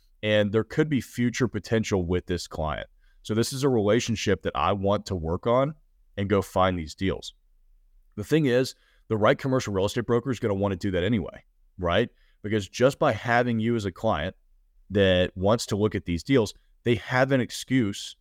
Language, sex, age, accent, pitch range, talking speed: English, male, 30-49, American, 95-115 Hz, 205 wpm